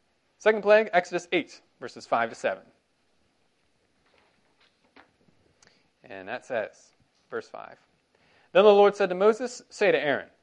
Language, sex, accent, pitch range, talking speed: English, male, American, 145-225 Hz, 125 wpm